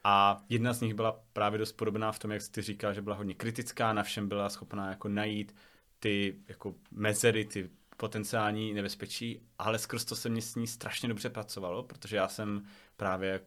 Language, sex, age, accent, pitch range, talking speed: Czech, male, 30-49, native, 105-115 Hz, 195 wpm